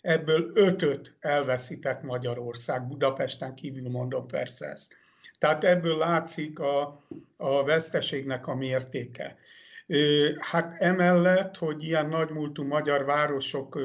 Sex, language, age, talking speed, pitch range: male, Hungarian, 60-79, 105 wpm, 135-160 Hz